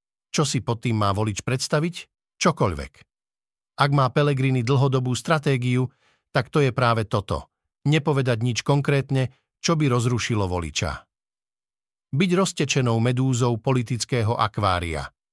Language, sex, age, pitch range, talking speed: Slovak, male, 50-69, 115-140 Hz, 115 wpm